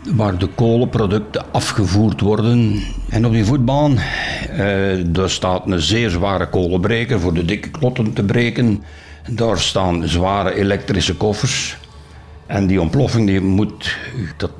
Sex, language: male, Dutch